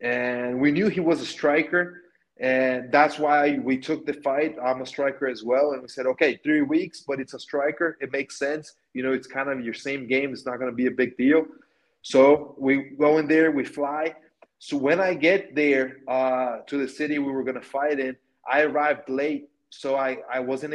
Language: English